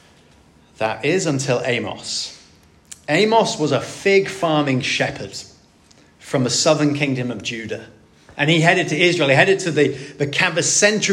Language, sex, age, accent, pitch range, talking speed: English, male, 40-59, British, 110-155 Hz, 150 wpm